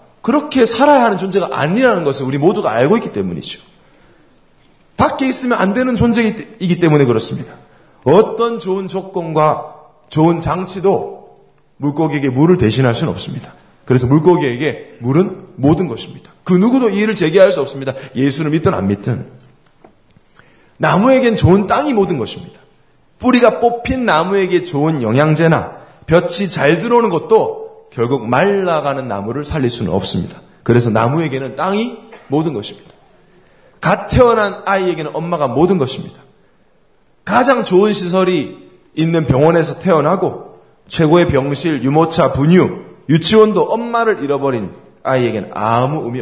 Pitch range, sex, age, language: 140-205 Hz, male, 40-59, Korean